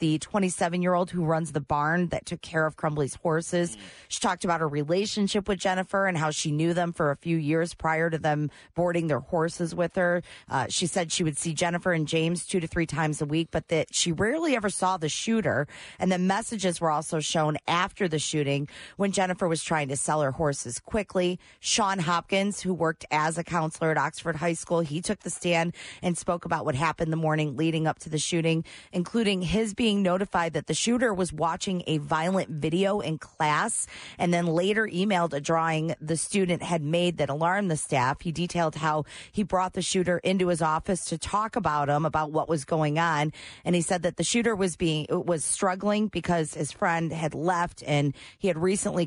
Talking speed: 210 wpm